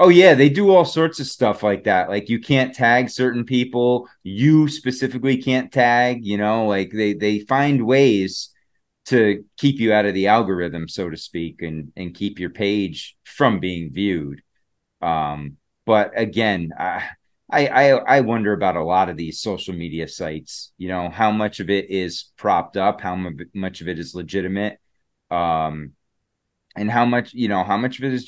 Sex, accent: male, American